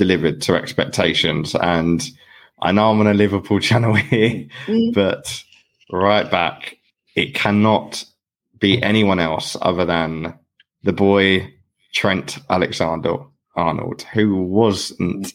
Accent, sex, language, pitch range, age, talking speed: British, male, English, 90-105 Hz, 20-39, 115 wpm